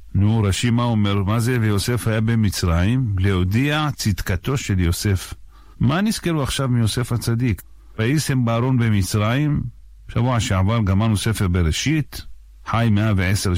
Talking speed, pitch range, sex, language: 125 wpm, 95-125 Hz, male, Hebrew